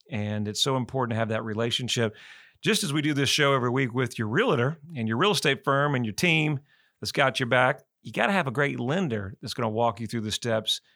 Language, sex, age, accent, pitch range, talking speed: English, male, 40-59, American, 110-135 Hz, 250 wpm